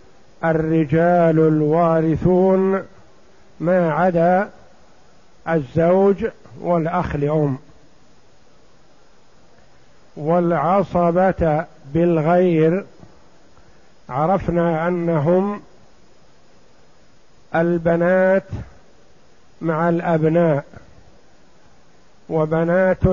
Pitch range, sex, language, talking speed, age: 165-180 Hz, male, Arabic, 40 wpm, 50-69